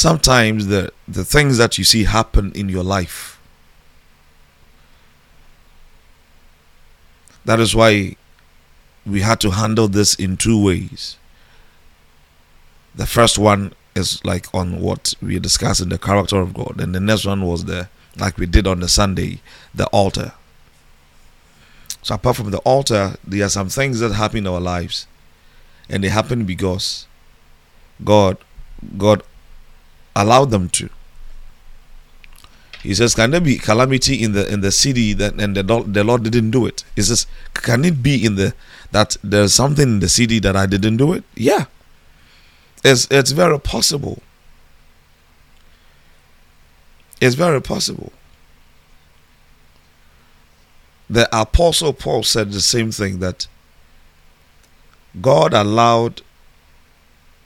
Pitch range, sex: 75-105 Hz, male